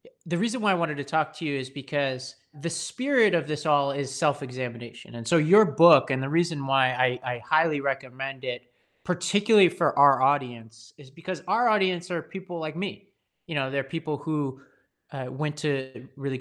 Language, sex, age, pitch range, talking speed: English, male, 30-49, 130-170 Hz, 190 wpm